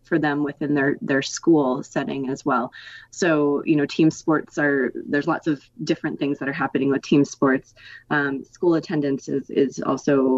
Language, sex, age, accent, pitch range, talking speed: English, female, 20-39, American, 135-160 Hz, 180 wpm